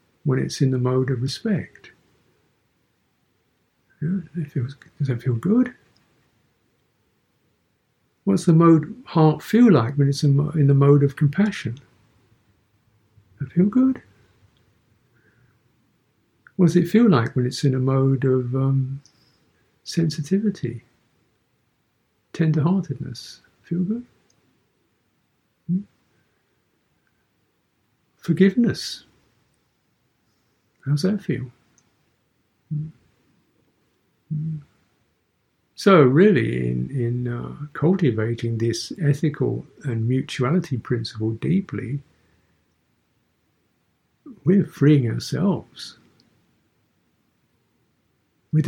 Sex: male